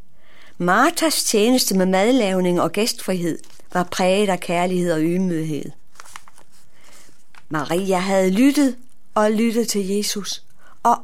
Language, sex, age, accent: Danish, female, 60-79, native